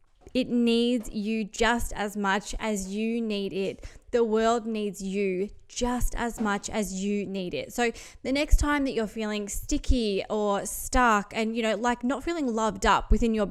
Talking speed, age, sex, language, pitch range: 180 wpm, 20-39, female, English, 205-245 Hz